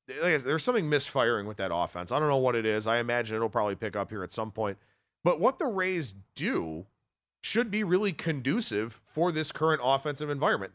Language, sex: English, male